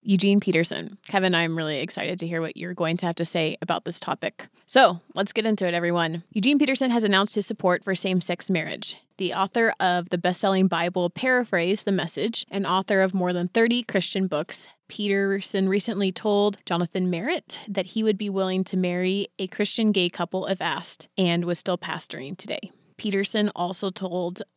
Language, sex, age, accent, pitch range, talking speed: English, female, 20-39, American, 180-210 Hz, 185 wpm